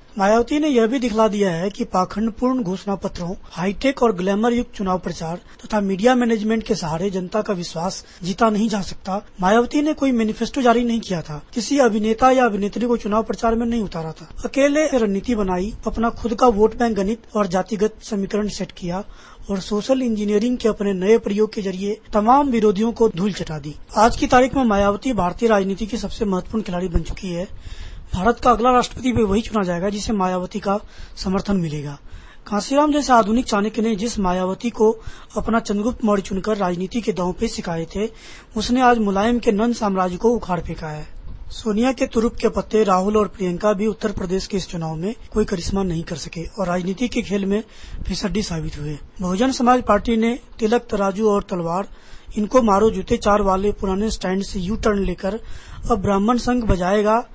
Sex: female